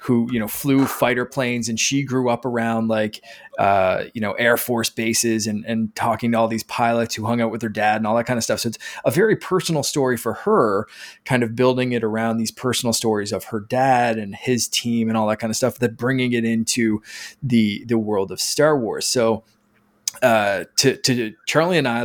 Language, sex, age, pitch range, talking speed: English, male, 20-39, 115-130 Hz, 225 wpm